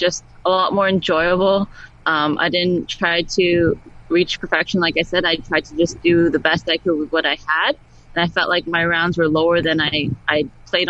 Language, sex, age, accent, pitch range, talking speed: English, female, 20-39, American, 165-190 Hz, 220 wpm